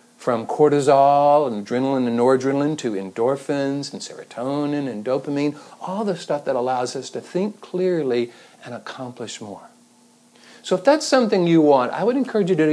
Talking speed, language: 165 wpm, English